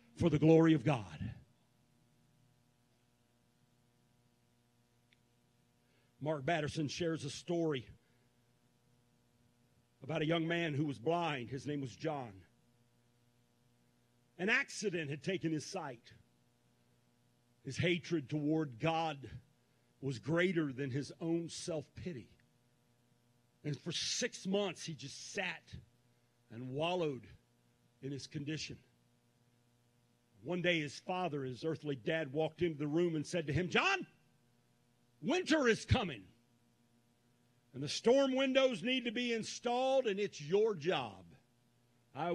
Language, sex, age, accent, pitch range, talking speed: English, male, 50-69, American, 120-170 Hz, 115 wpm